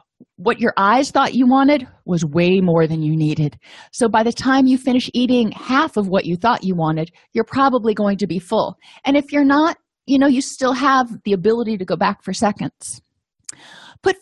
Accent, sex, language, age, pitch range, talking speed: American, female, English, 30-49, 185-245 Hz, 205 wpm